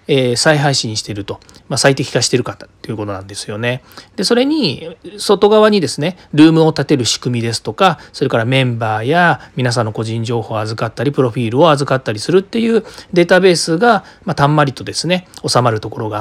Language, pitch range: Japanese, 115-170 Hz